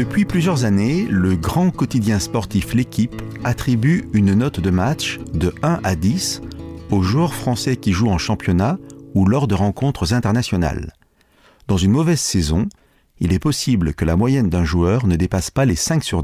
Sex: male